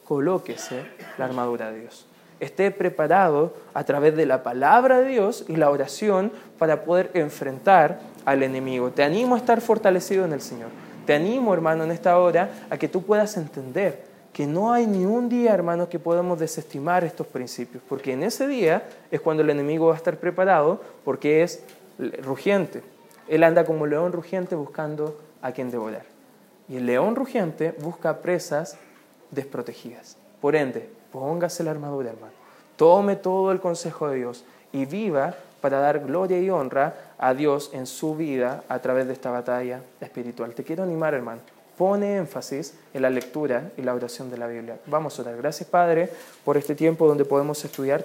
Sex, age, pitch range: male, 20-39, 135-175 Hz